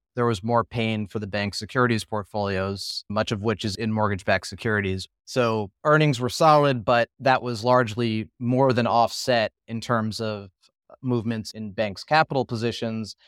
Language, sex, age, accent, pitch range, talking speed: English, male, 30-49, American, 100-120 Hz, 160 wpm